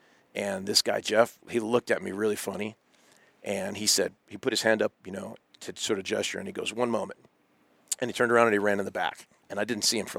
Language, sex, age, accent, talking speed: English, male, 40-59, American, 265 wpm